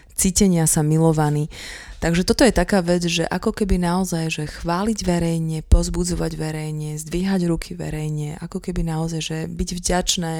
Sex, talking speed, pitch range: female, 150 wpm, 155-175 Hz